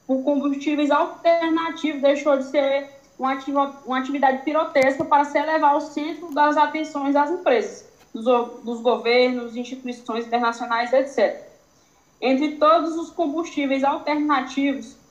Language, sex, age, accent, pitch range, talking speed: Portuguese, female, 10-29, Brazilian, 255-300 Hz, 125 wpm